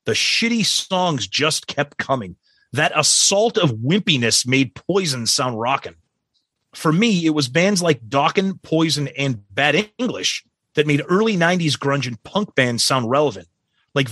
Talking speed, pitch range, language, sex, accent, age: 155 wpm, 130-170 Hz, English, male, American, 30-49